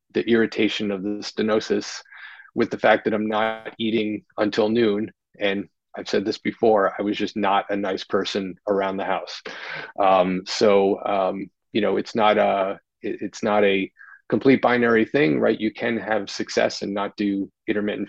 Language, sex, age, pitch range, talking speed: English, male, 30-49, 100-110 Hz, 175 wpm